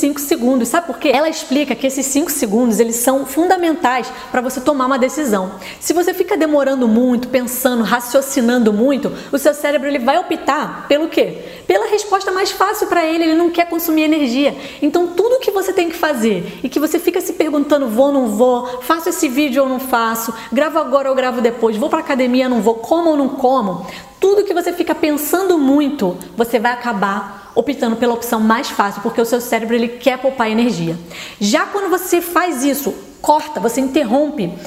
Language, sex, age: Portuguese, female, 20-39